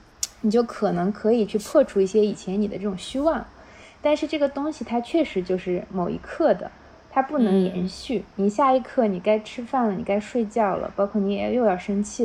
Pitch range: 190-220 Hz